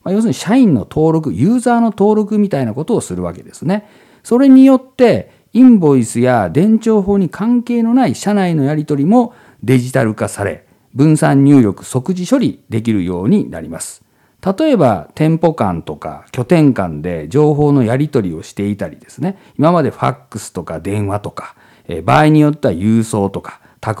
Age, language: 50-69, Japanese